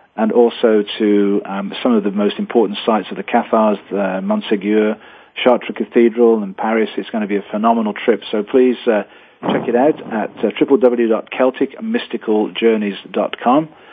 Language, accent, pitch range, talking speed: English, British, 105-125 Hz, 150 wpm